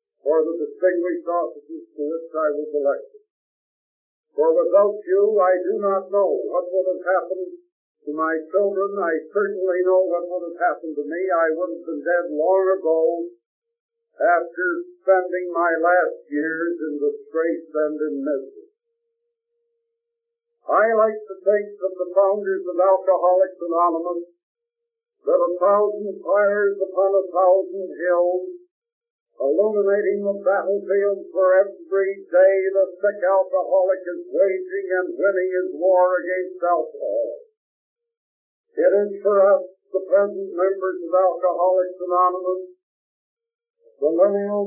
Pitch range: 180-205 Hz